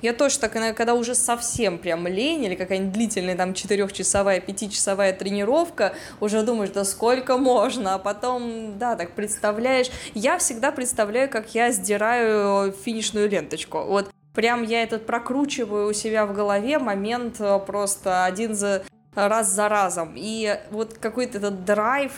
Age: 20-39